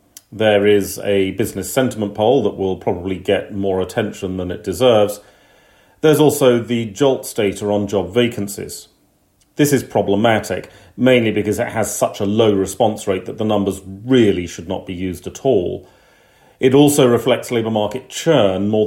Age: 40-59